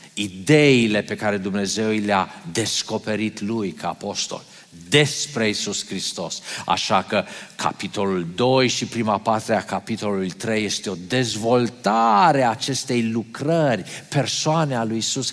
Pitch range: 115-185 Hz